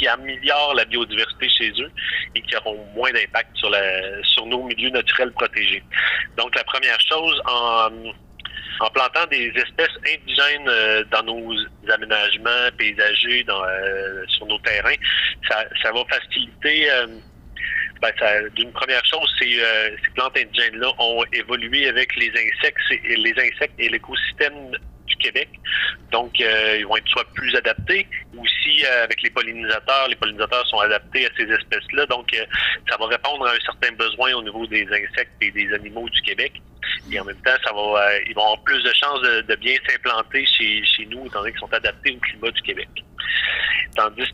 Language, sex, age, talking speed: French, male, 30-49, 175 wpm